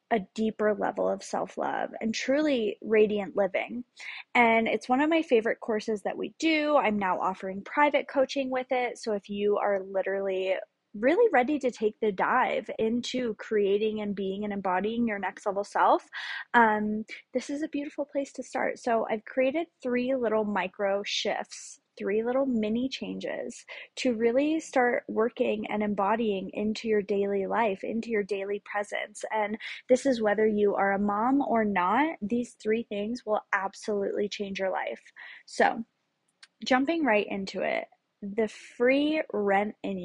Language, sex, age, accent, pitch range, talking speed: English, female, 20-39, American, 205-260 Hz, 160 wpm